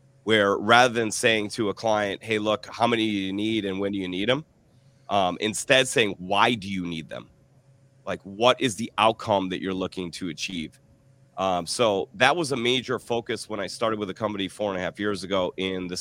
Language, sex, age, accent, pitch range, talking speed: English, male, 30-49, American, 95-120 Hz, 220 wpm